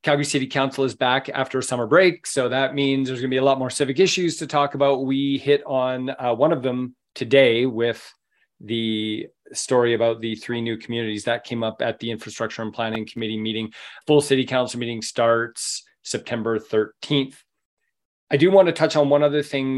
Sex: male